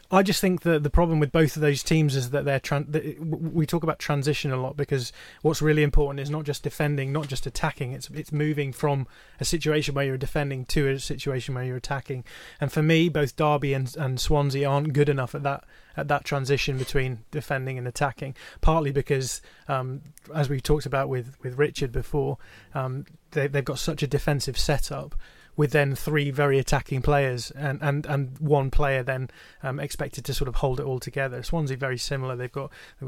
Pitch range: 135-150 Hz